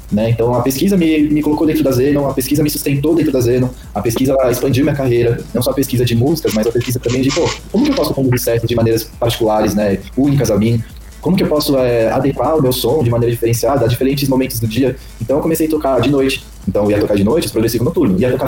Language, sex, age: Portuguese, male, 20-39